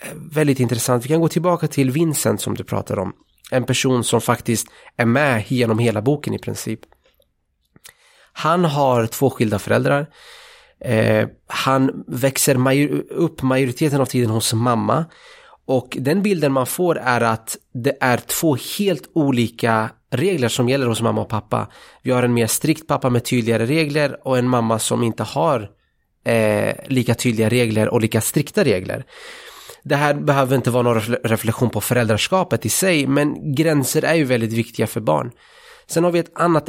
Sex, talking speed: male, 170 wpm